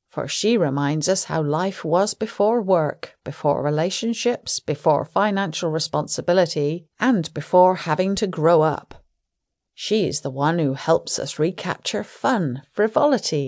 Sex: female